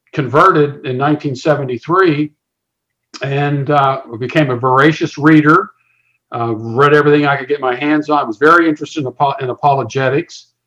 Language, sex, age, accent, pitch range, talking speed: English, male, 50-69, American, 125-155 Hz, 135 wpm